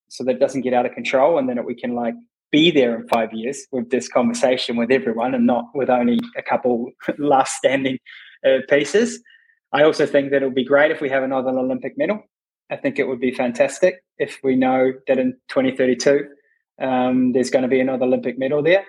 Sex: male